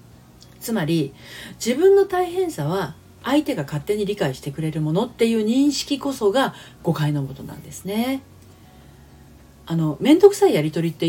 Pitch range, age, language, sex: 135-215 Hz, 40-59, Japanese, female